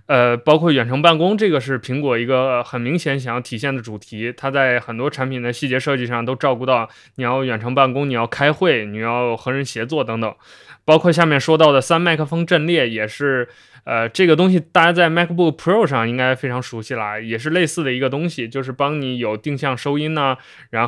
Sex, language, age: male, Chinese, 20-39